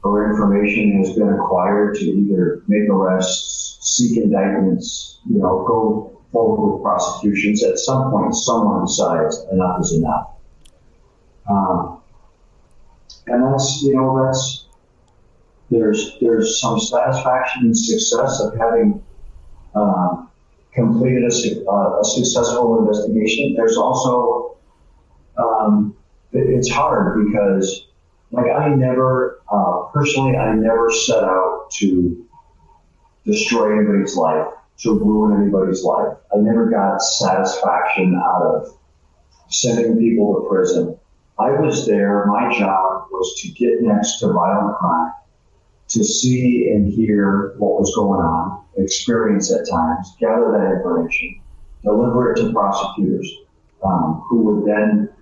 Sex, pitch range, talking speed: male, 95-120 Hz, 125 wpm